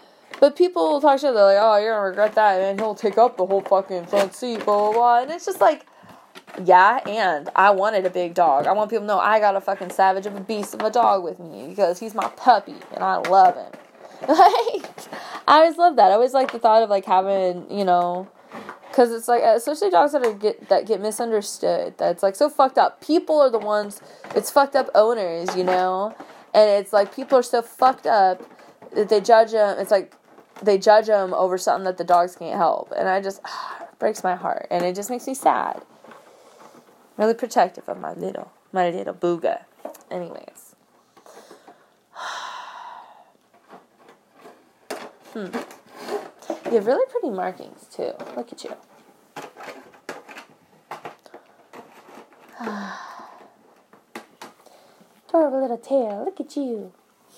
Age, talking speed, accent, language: 20-39, 175 wpm, American, English